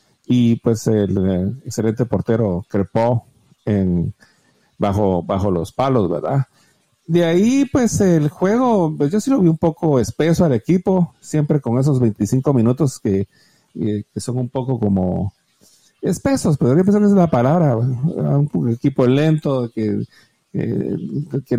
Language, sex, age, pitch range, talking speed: Spanish, male, 50-69, 110-160 Hz, 150 wpm